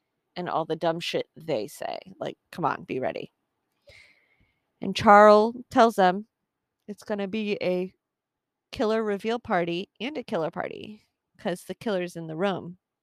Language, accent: English, American